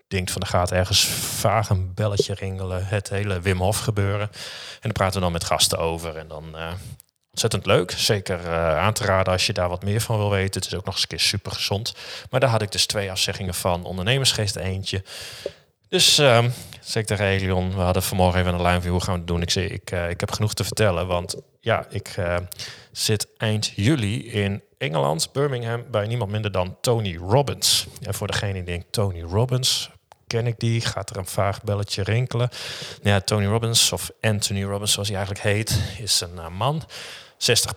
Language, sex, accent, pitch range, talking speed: Dutch, male, Dutch, 95-110 Hz, 210 wpm